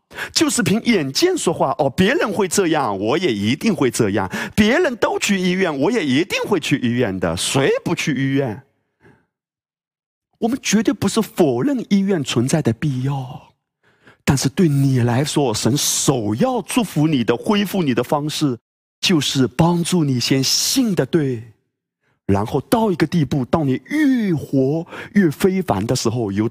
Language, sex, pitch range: Chinese, male, 130-200 Hz